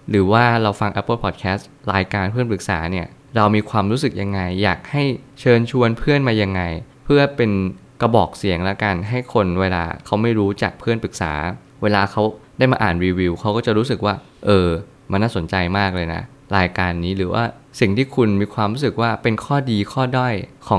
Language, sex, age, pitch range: Thai, male, 20-39, 95-120 Hz